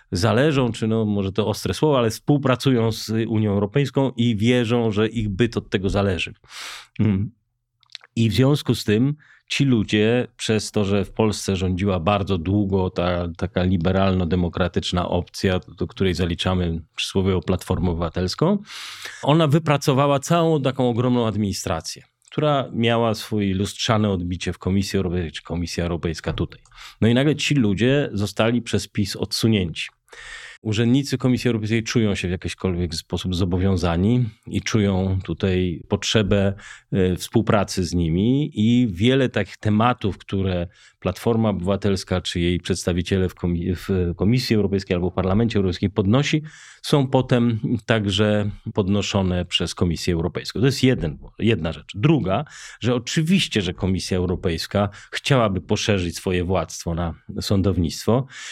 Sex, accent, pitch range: male, native, 90-120 Hz